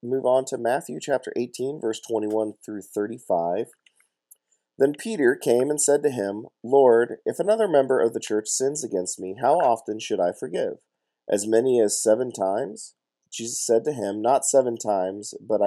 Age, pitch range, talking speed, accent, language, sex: 40-59, 105-130 Hz, 170 wpm, American, English, male